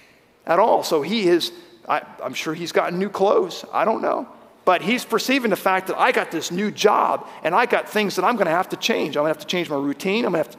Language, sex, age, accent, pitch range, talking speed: English, male, 40-59, American, 175-225 Hz, 285 wpm